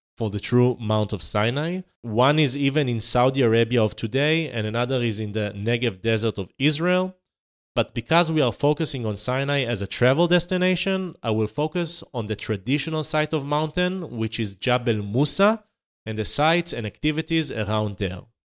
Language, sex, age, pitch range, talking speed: English, male, 30-49, 110-155 Hz, 175 wpm